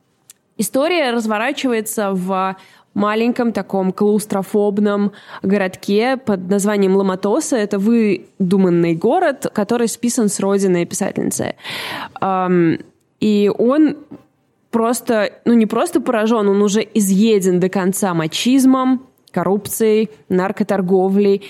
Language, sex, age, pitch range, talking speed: Russian, female, 20-39, 190-230 Hz, 90 wpm